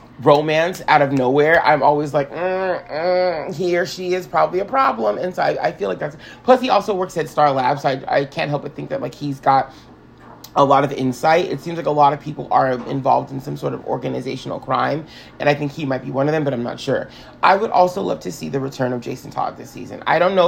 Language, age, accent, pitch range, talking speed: English, 30-49, American, 130-160 Hz, 260 wpm